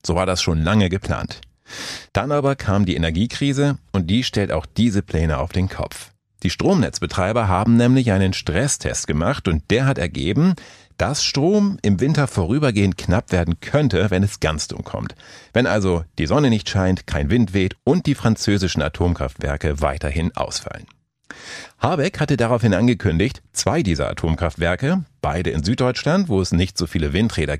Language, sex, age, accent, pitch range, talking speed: German, male, 40-59, German, 85-120 Hz, 165 wpm